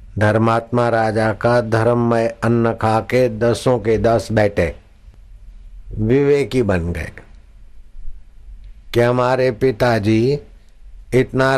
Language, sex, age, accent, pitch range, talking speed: Hindi, male, 60-79, native, 100-125 Hz, 95 wpm